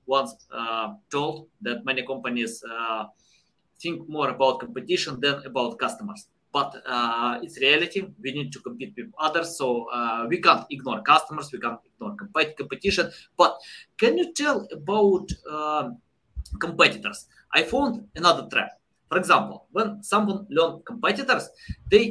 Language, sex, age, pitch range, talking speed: English, male, 20-39, 150-215 Hz, 145 wpm